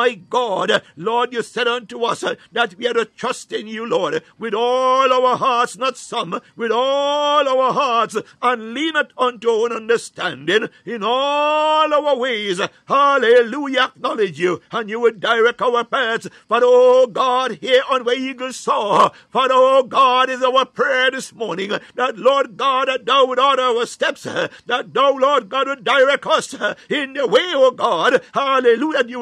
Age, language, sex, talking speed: 60-79, English, male, 170 wpm